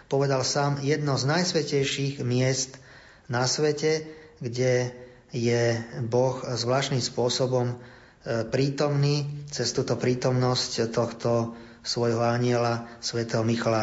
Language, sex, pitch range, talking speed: Slovak, male, 125-145 Hz, 95 wpm